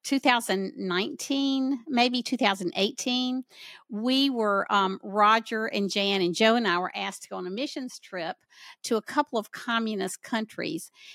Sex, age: female, 50-69